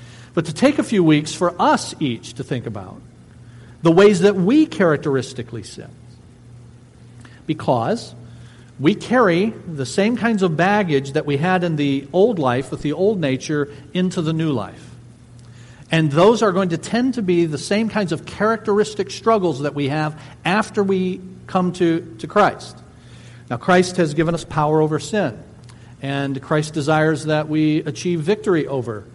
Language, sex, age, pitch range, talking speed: English, male, 50-69, 125-185 Hz, 165 wpm